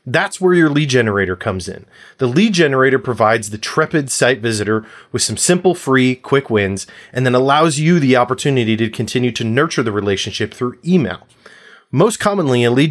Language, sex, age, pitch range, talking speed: English, male, 30-49, 115-165 Hz, 180 wpm